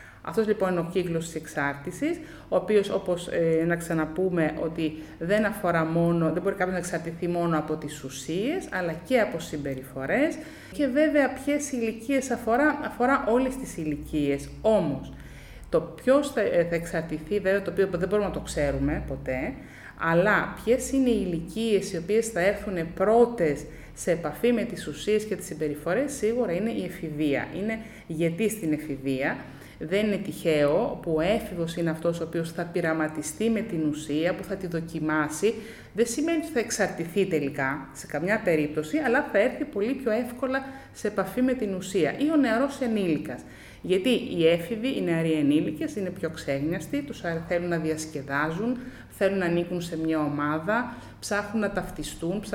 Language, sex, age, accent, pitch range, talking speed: French, female, 30-49, Greek, 160-220 Hz, 165 wpm